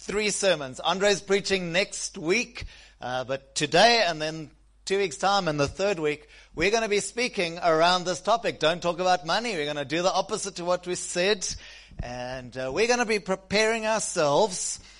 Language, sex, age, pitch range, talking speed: English, male, 30-49, 165-220 Hz, 190 wpm